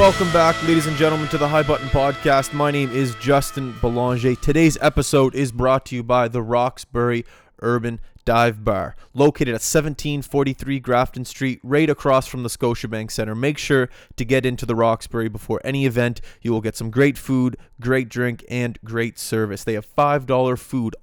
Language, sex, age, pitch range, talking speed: English, male, 20-39, 115-140 Hz, 180 wpm